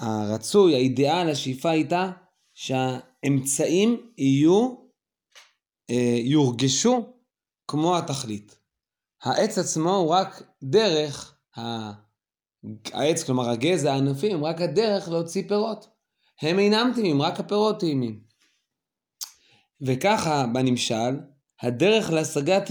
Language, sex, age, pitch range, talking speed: Hebrew, male, 20-39, 135-195 Hz, 85 wpm